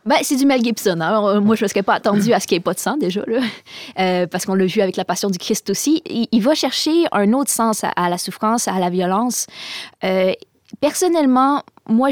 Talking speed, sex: 255 wpm, female